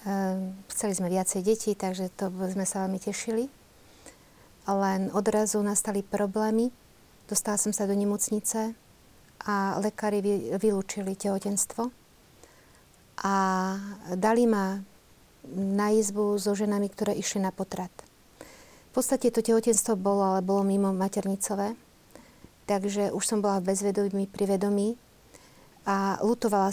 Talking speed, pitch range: 115 wpm, 195-215 Hz